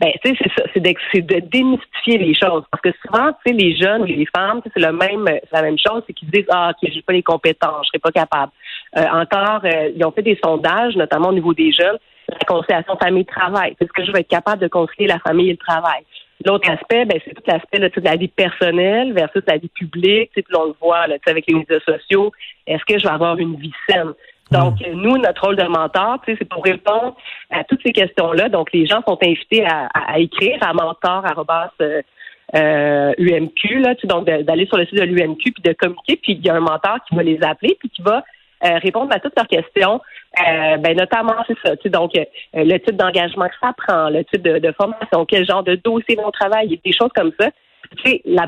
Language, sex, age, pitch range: French, female, 40-59, 165-210 Hz